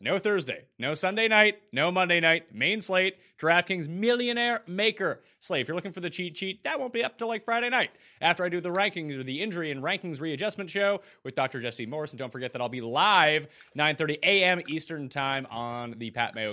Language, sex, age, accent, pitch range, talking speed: English, male, 30-49, American, 130-200 Hz, 220 wpm